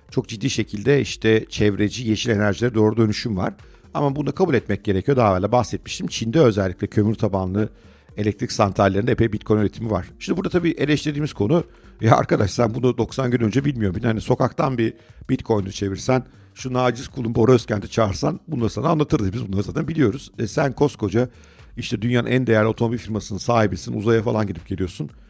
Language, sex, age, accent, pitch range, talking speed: Turkish, male, 50-69, native, 105-130 Hz, 175 wpm